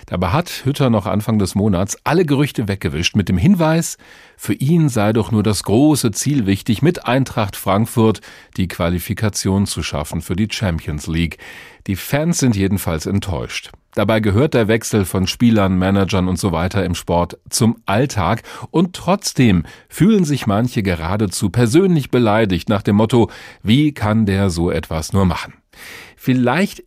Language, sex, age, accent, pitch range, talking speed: German, male, 40-59, German, 90-120 Hz, 160 wpm